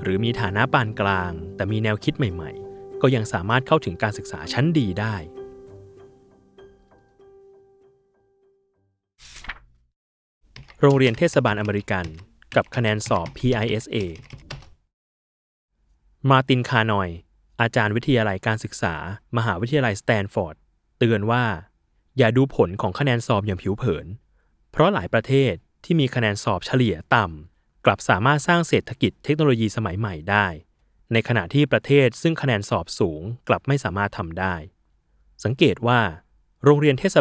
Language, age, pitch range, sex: Thai, 20-39, 95-130 Hz, male